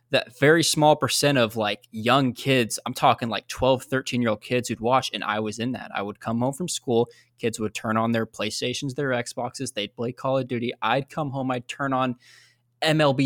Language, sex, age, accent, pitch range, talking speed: English, male, 20-39, American, 120-145 Hz, 220 wpm